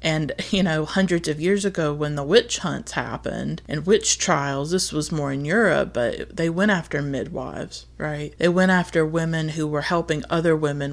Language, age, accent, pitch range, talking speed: English, 30-49, American, 145-170 Hz, 190 wpm